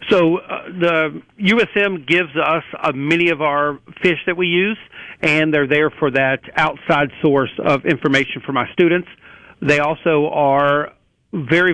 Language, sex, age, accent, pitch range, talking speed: English, male, 50-69, American, 140-165 Hz, 155 wpm